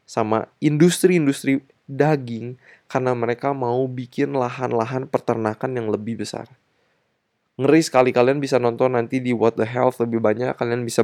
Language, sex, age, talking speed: Indonesian, male, 20-39, 140 wpm